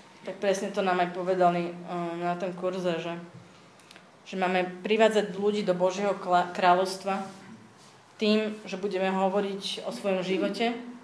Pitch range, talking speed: 180-200 Hz, 130 wpm